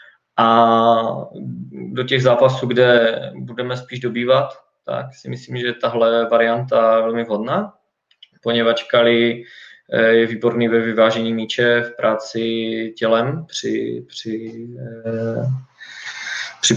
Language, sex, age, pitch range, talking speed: Czech, male, 20-39, 115-120 Hz, 105 wpm